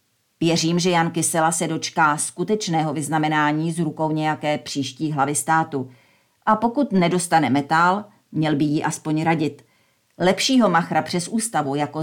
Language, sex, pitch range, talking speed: Czech, female, 150-180 Hz, 140 wpm